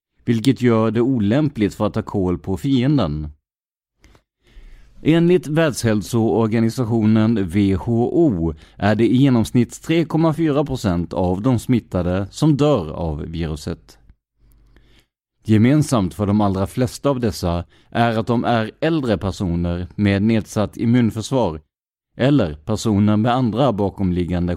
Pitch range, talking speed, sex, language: 95-130 Hz, 110 wpm, male, English